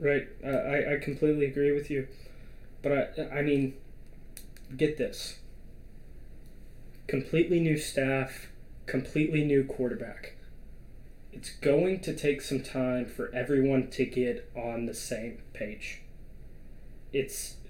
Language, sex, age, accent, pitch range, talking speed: English, male, 20-39, American, 130-150 Hz, 120 wpm